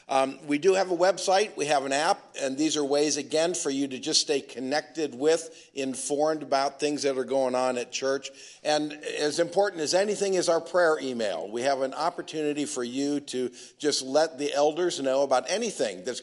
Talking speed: 205 wpm